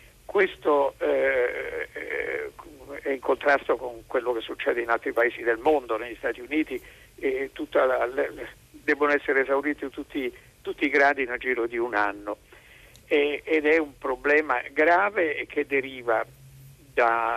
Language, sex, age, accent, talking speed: Italian, male, 50-69, native, 130 wpm